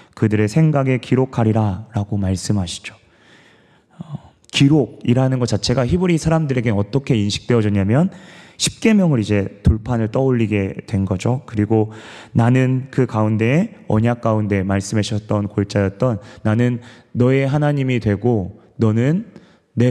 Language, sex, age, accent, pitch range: Korean, male, 30-49, native, 105-135 Hz